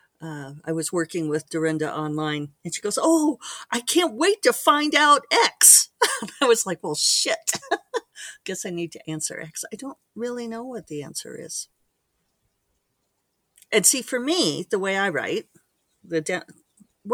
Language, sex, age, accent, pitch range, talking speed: English, female, 50-69, American, 160-240 Hz, 165 wpm